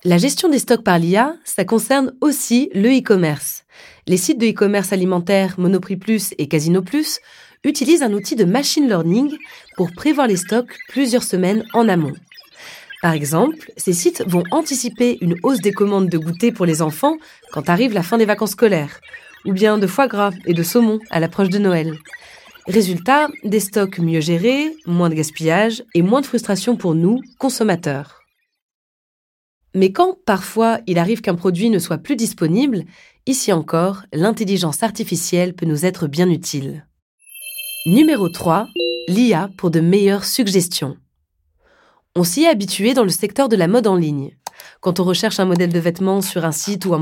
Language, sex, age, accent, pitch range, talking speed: French, female, 20-39, French, 175-245 Hz, 170 wpm